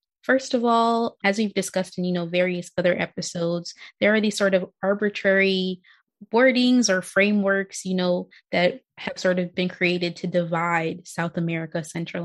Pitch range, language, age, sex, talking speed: 180-205 Hz, English, 20-39, female, 165 wpm